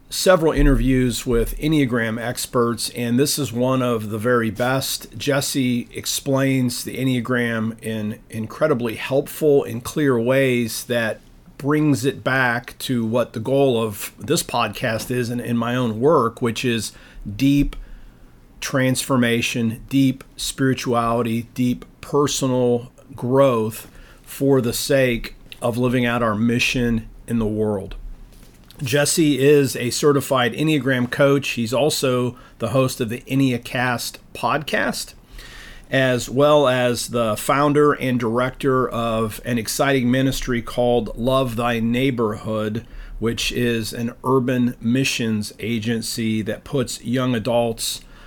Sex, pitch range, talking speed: male, 115-135 Hz, 125 wpm